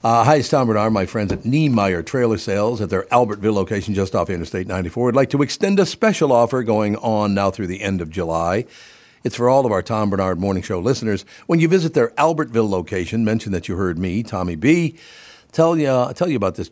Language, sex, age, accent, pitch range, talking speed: English, male, 60-79, American, 95-130 Hz, 225 wpm